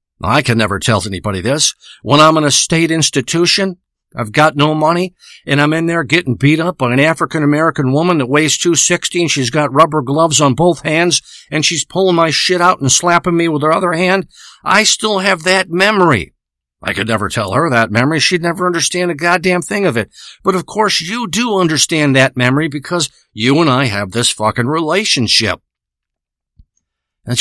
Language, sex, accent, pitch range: English, male, American, 125-175 Hz